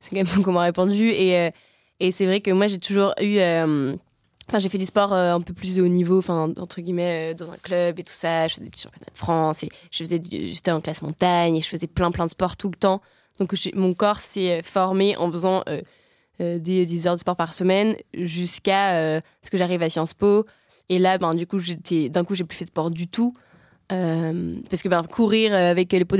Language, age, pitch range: French, 20-39, 175-205 Hz